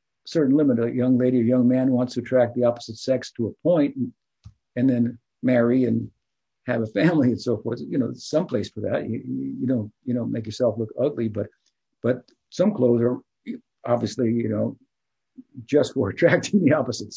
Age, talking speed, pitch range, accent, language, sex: 50-69, 195 wpm, 115-135 Hz, American, English, male